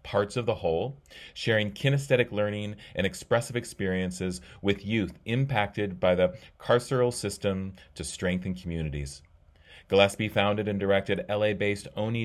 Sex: male